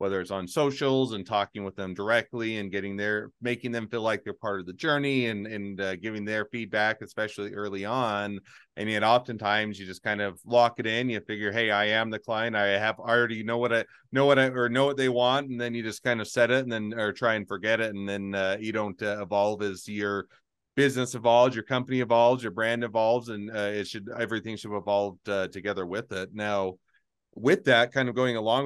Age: 30-49